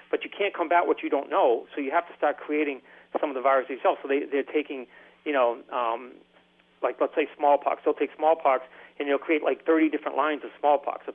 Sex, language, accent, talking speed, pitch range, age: male, English, American, 230 wpm, 140-165 Hz, 40-59